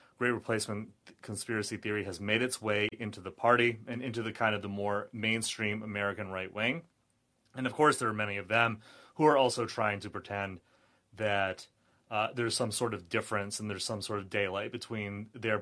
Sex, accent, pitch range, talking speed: male, American, 100-120 Hz, 195 wpm